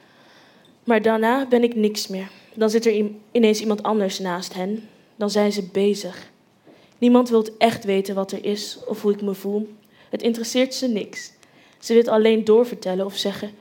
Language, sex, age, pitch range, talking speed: Dutch, female, 20-39, 205-245 Hz, 175 wpm